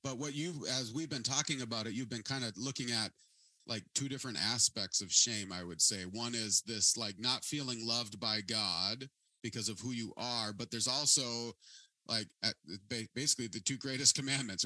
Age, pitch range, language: 30-49, 105-130 Hz, English